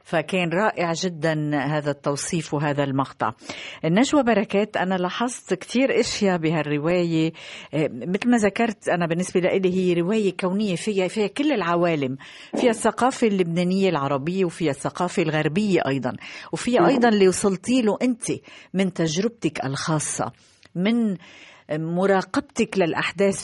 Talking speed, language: 120 wpm, Arabic